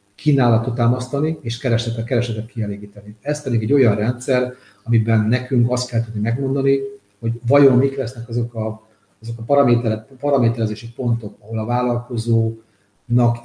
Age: 40-59